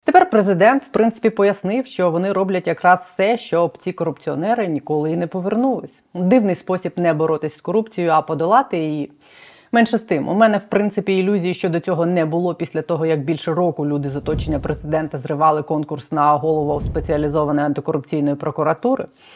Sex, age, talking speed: female, 30-49, 165 wpm